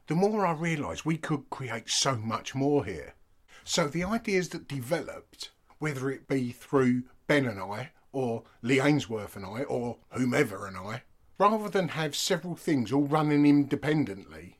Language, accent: English, British